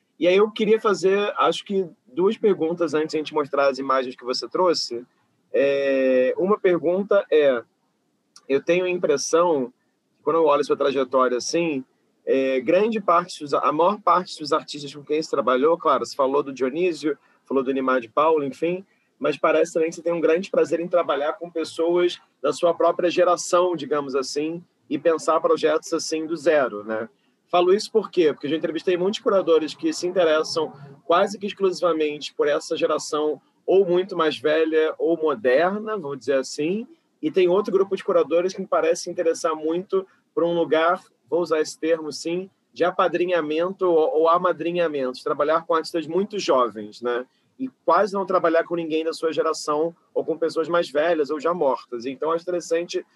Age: 30-49